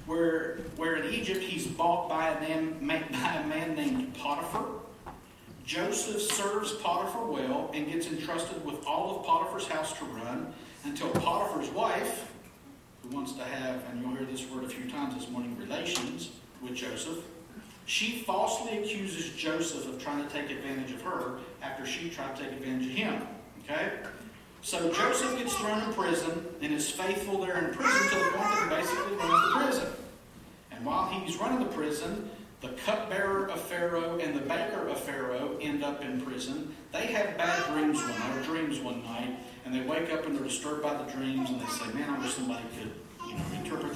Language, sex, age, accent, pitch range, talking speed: English, male, 50-69, American, 150-225 Hz, 190 wpm